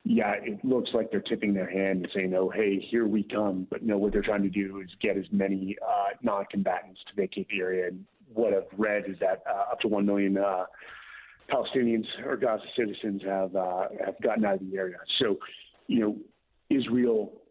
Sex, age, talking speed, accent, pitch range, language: male, 30-49, 215 wpm, American, 95-100 Hz, English